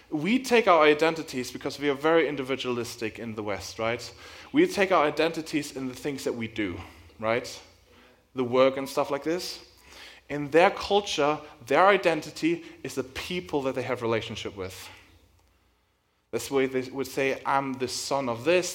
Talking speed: 175 wpm